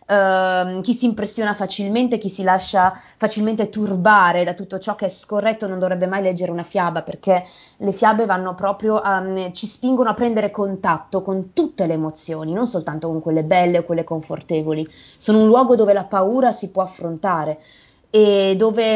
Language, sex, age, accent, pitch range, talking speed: Italian, female, 20-39, native, 180-215 Hz, 180 wpm